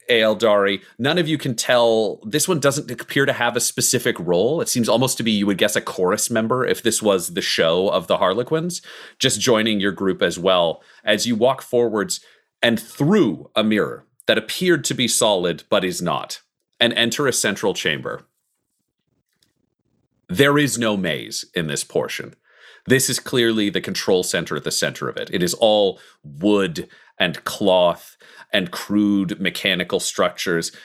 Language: English